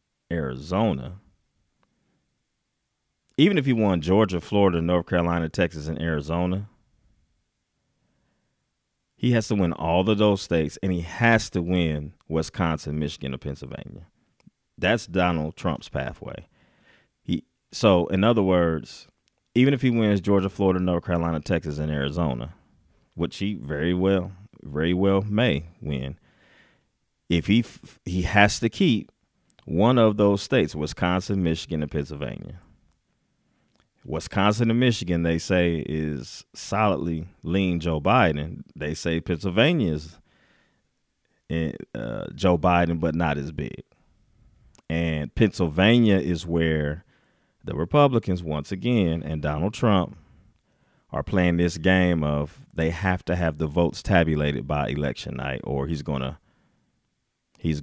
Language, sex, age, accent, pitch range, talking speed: English, male, 30-49, American, 75-100 Hz, 125 wpm